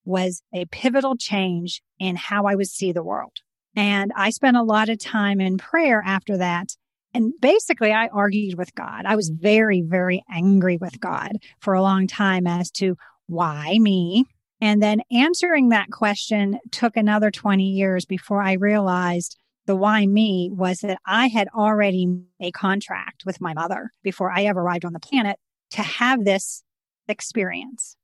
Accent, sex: American, female